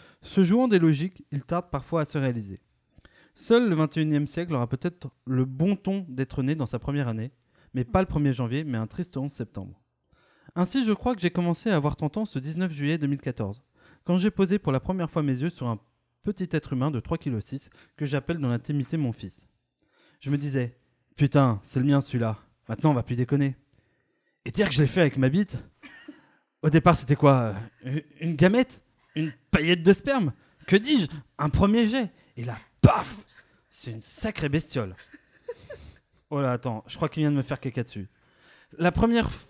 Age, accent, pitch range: 20-39, French, 130-175 Hz